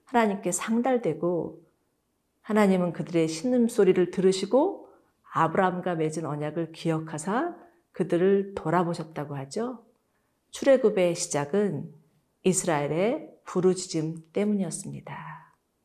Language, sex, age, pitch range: Korean, female, 40-59, 170-220 Hz